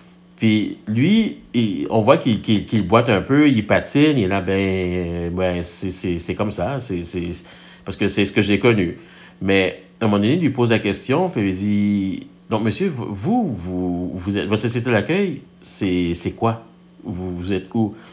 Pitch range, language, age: 95-130 Hz, French, 50-69